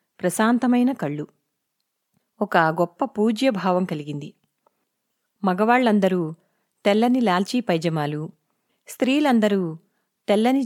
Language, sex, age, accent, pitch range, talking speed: Telugu, female, 30-49, native, 175-225 Hz, 70 wpm